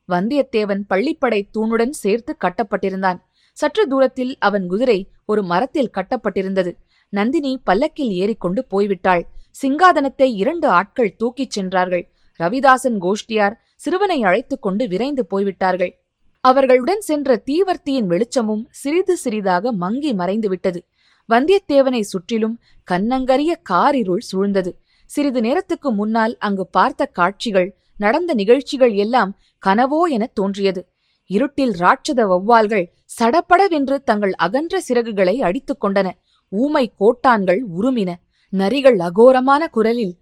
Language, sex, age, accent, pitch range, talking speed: Tamil, female, 20-39, native, 190-265 Hz, 100 wpm